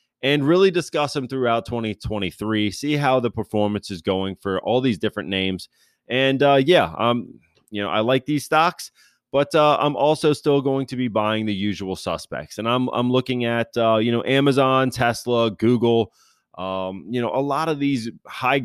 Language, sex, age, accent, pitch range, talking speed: English, male, 30-49, American, 95-130 Hz, 185 wpm